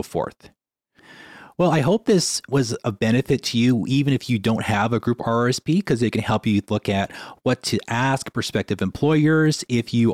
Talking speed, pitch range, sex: 190 wpm, 100-130 Hz, male